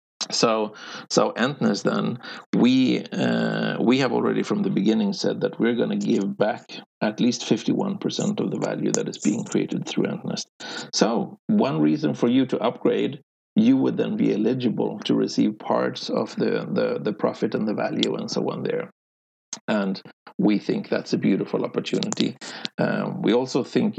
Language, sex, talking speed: English, male, 175 wpm